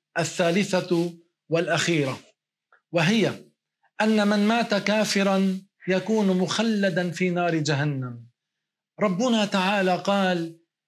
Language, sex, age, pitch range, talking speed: Arabic, male, 40-59, 185-215 Hz, 85 wpm